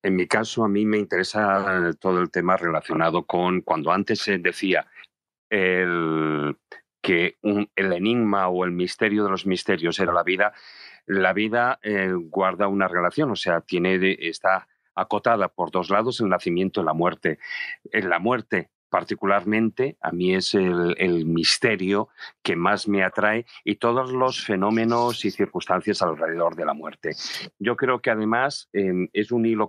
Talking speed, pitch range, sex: 165 wpm, 95-120 Hz, male